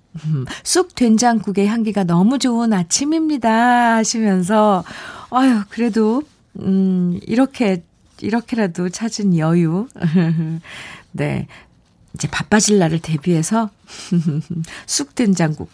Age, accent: 50-69, native